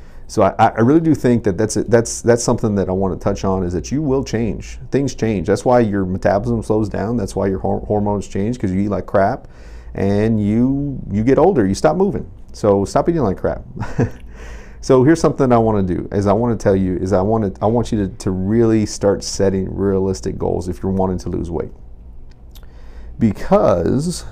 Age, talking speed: 40-59, 215 wpm